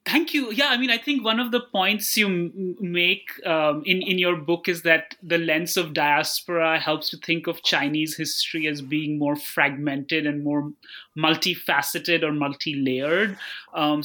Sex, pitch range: male, 150-185 Hz